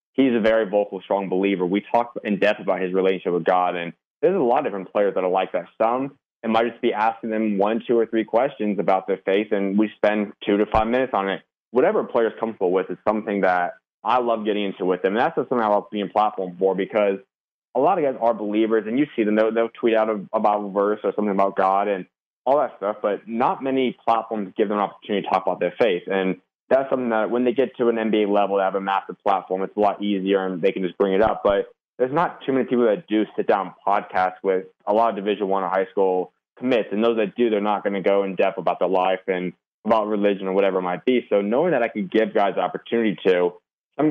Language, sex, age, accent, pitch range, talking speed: English, male, 20-39, American, 95-115 Hz, 265 wpm